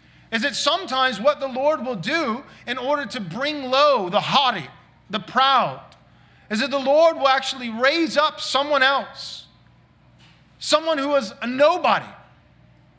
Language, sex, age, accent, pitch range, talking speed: English, male, 40-59, American, 220-285 Hz, 150 wpm